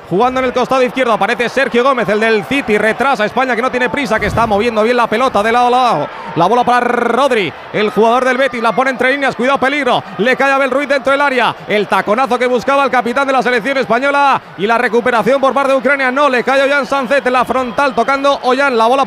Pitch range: 230-275 Hz